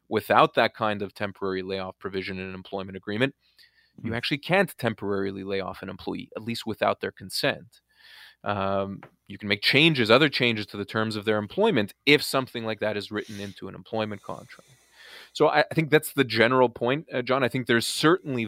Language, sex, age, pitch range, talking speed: English, male, 20-39, 100-125 Hz, 200 wpm